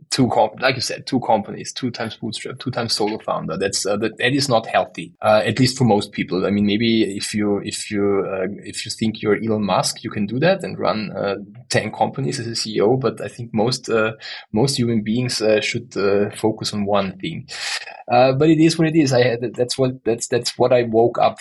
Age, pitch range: 20-39, 105-125 Hz